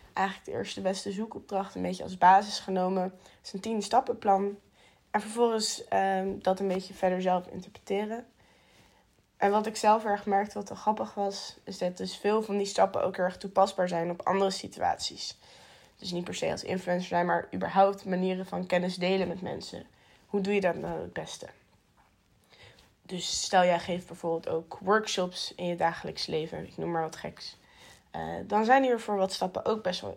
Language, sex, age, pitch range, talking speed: Dutch, female, 20-39, 185-220 Hz, 190 wpm